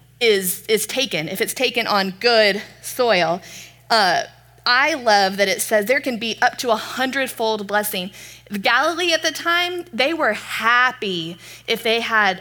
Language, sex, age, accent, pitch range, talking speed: English, female, 20-39, American, 205-270 Hz, 165 wpm